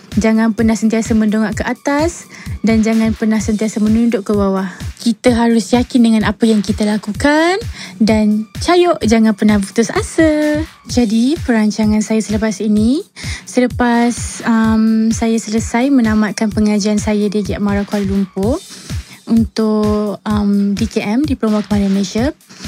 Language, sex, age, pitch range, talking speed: Malay, female, 20-39, 210-245 Hz, 130 wpm